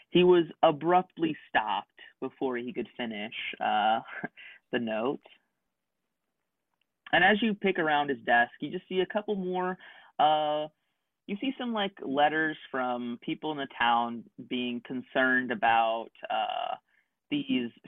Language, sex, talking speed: English, male, 135 wpm